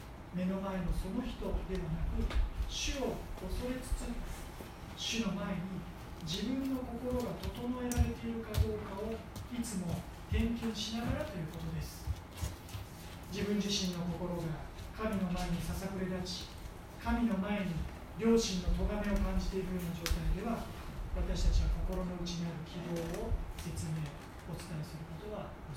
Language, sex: Japanese, male